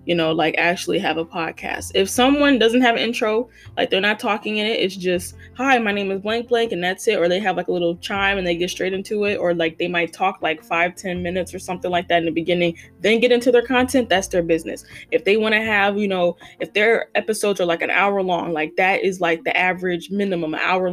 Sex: female